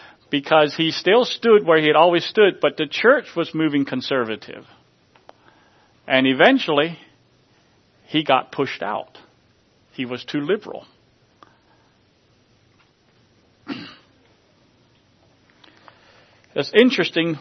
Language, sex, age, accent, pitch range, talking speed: English, male, 50-69, American, 130-165 Hz, 95 wpm